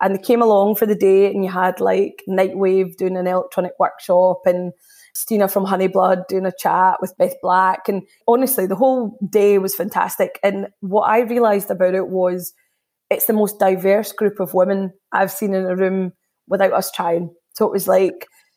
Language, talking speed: English, 190 wpm